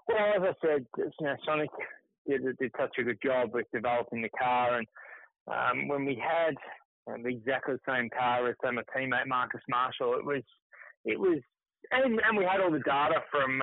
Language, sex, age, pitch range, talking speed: English, male, 30-49, 135-185 Hz, 205 wpm